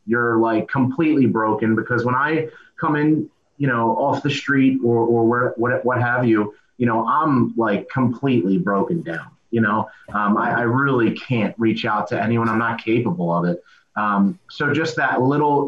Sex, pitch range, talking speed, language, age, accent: male, 115-135 Hz, 190 wpm, English, 30-49, American